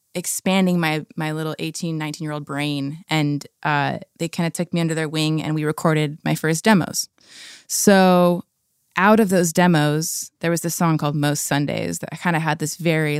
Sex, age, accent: female, 20-39, American